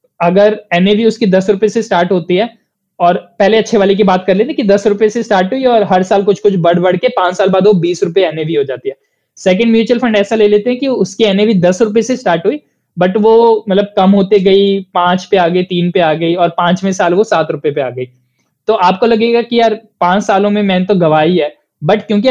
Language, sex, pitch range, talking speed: Hindi, male, 180-215 Hz, 245 wpm